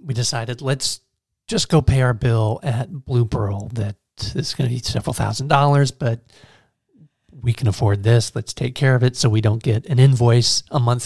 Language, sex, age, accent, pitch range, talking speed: English, male, 40-59, American, 115-135 Hz, 200 wpm